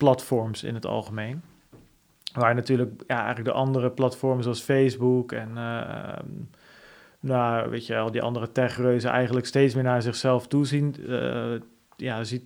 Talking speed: 150 wpm